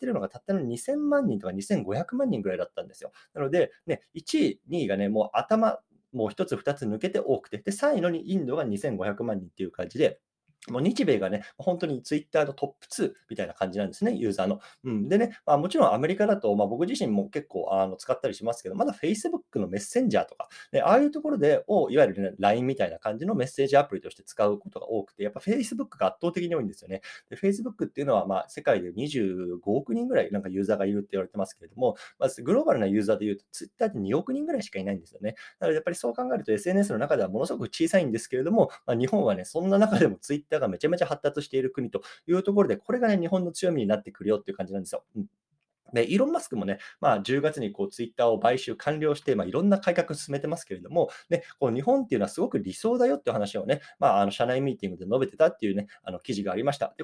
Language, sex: Japanese, male